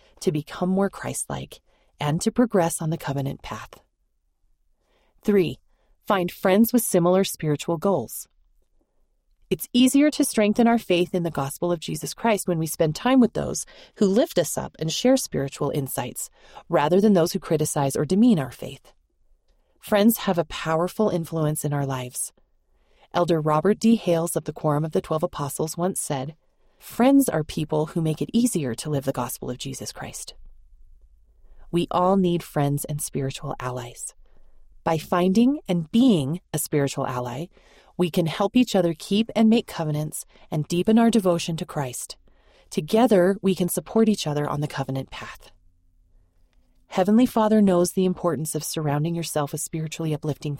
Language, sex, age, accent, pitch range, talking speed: English, female, 30-49, American, 145-195 Hz, 165 wpm